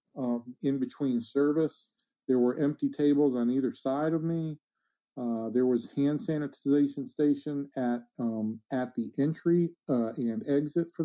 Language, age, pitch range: English, 50-69, 120-150 Hz